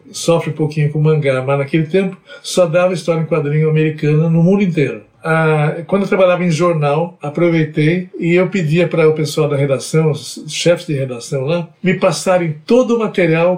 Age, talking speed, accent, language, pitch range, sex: 60-79, 185 wpm, Brazilian, Portuguese, 155-185 Hz, male